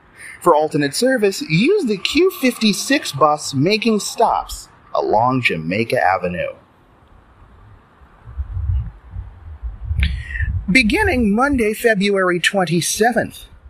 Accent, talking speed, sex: American, 70 wpm, male